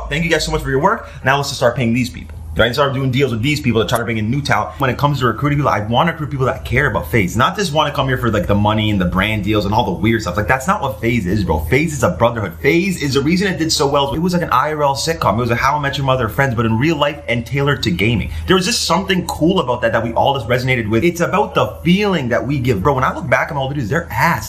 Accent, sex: American, male